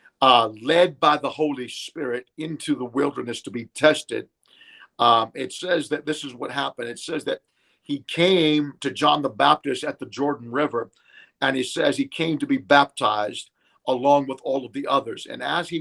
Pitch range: 135-170 Hz